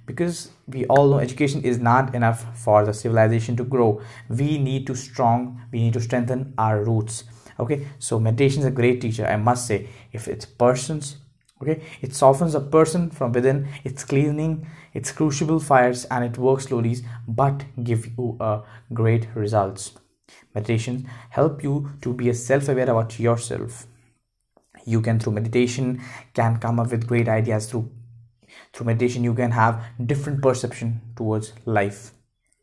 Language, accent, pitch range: Hindi, native, 115-130 Hz